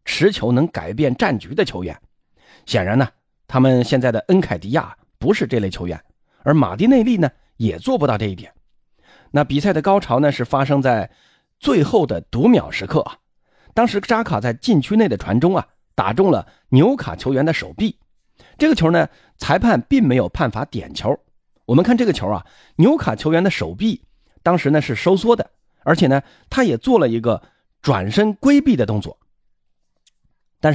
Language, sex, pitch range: Chinese, male, 125-210 Hz